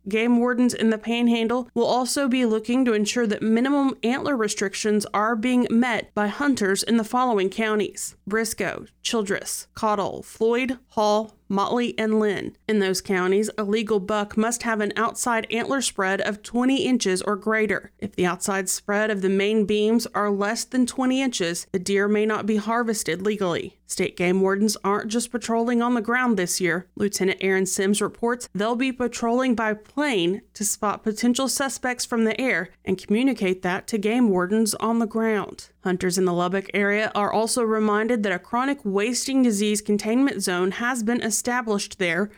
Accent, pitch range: American, 200-240 Hz